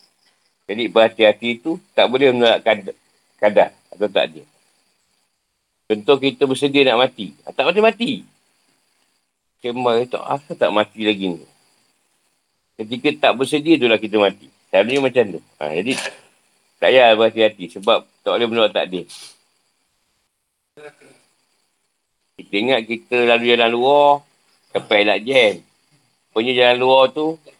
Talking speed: 125 wpm